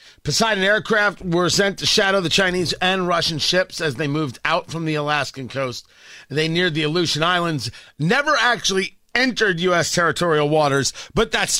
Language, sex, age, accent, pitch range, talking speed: English, male, 40-59, American, 130-220 Hz, 165 wpm